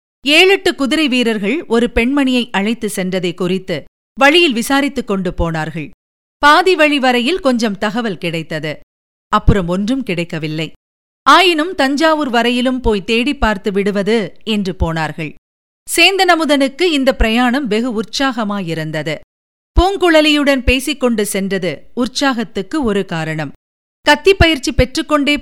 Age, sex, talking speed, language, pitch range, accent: 50-69, female, 100 wpm, Tamil, 190-290 Hz, native